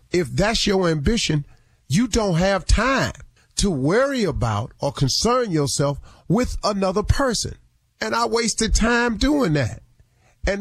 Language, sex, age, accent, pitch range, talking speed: English, male, 40-59, American, 120-190 Hz, 135 wpm